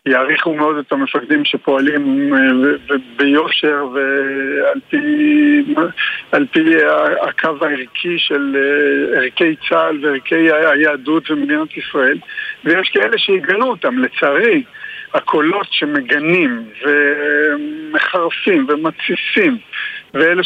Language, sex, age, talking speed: Hebrew, male, 50-69, 80 wpm